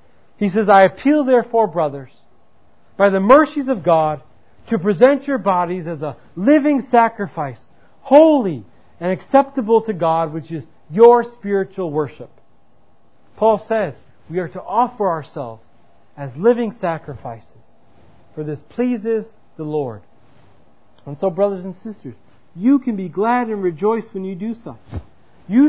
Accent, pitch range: American, 155-235 Hz